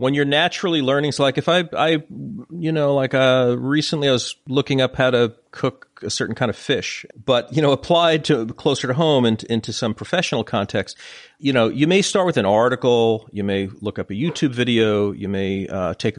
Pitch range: 110-140 Hz